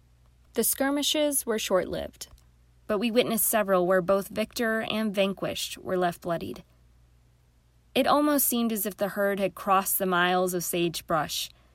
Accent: American